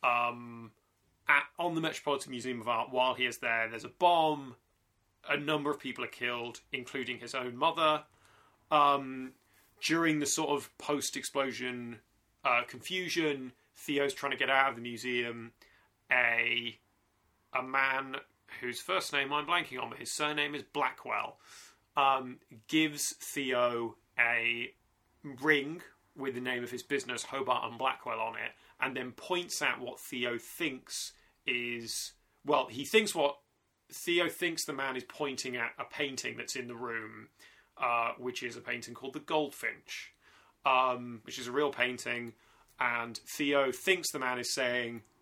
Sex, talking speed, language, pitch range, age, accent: male, 155 wpm, English, 120-145 Hz, 30-49, British